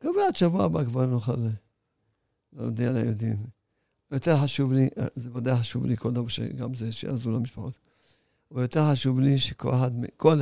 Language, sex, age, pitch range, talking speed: Hebrew, male, 50-69, 120-150 Hz, 165 wpm